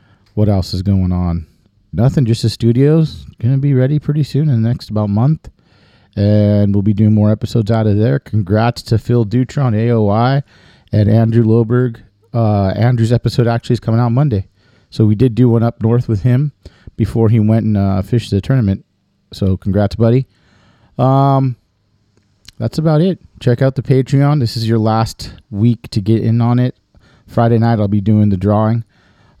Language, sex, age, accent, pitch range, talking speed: English, male, 40-59, American, 105-120 Hz, 185 wpm